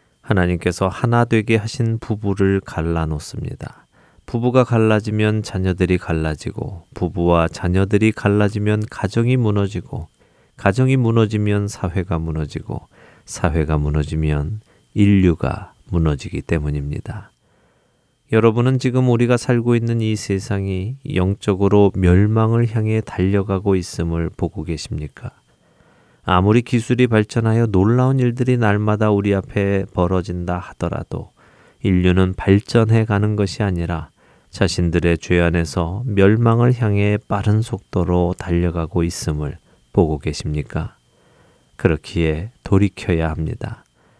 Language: Korean